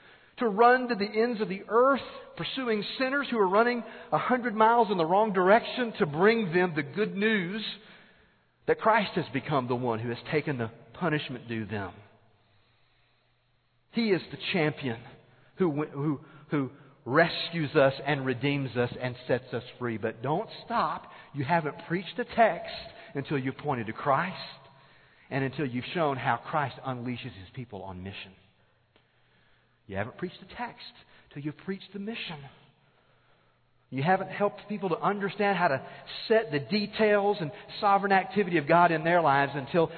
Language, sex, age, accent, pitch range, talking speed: English, male, 40-59, American, 120-195 Hz, 165 wpm